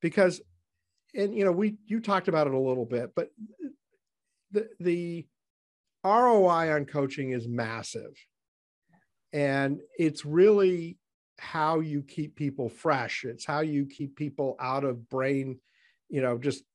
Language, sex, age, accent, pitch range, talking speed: English, male, 50-69, American, 125-165 Hz, 140 wpm